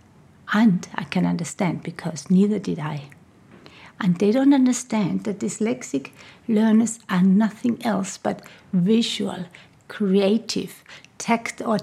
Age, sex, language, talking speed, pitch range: 60-79, female, English, 110 wpm, 180-225 Hz